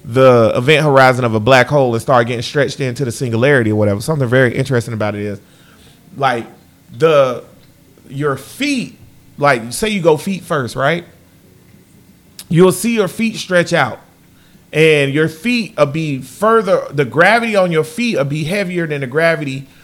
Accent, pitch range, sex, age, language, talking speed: American, 135-180 Hz, male, 30-49, English, 170 wpm